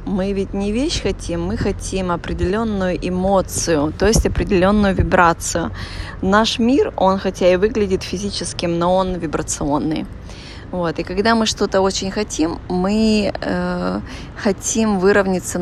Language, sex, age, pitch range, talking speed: Russian, female, 20-39, 165-195 Hz, 130 wpm